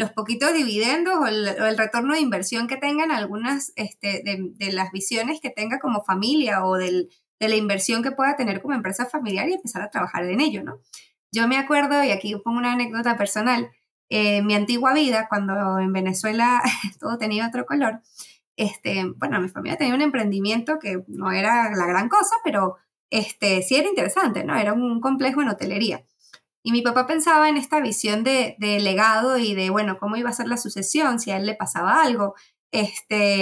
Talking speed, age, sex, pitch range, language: 200 wpm, 20-39, female, 205-275 Hz, Spanish